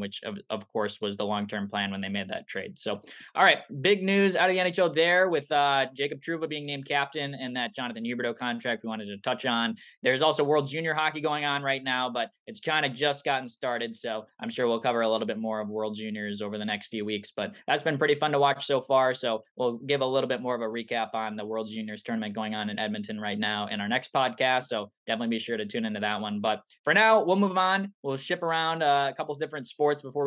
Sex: male